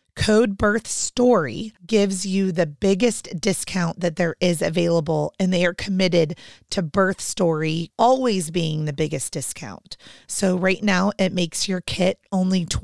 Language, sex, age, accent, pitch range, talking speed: English, female, 30-49, American, 175-205 Hz, 150 wpm